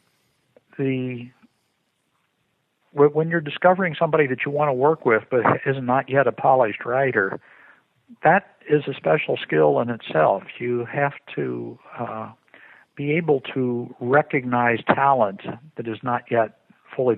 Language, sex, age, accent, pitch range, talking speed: English, male, 60-79, American, 110-140 Hz, 135 wpm